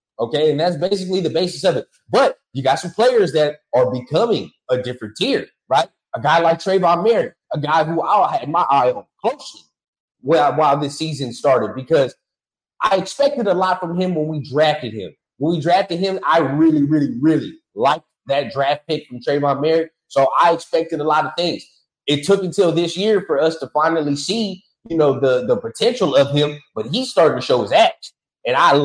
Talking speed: 205 wpm